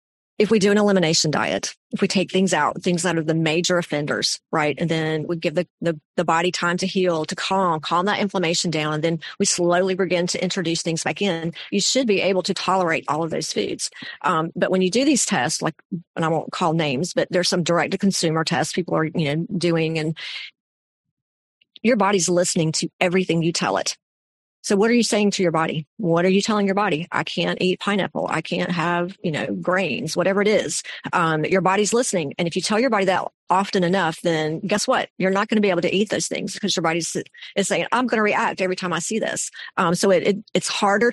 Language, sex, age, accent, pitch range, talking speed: English, female, 40-59, American, 165-200 Hz, 230 wpm